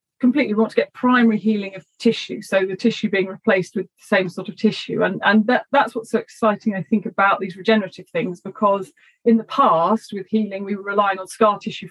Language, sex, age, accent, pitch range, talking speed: English, female, 30-49, British, 185-220 Hz, 225 wpm